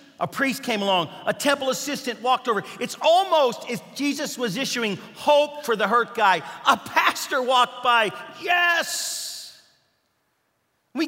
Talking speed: 145 wpm